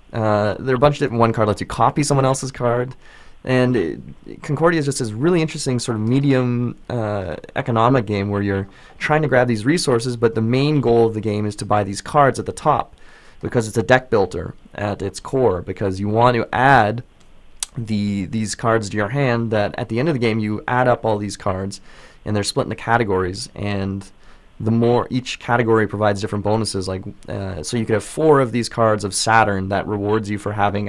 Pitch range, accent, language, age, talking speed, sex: 100-125 Hz, American, English, 20-39, 225 wpm, male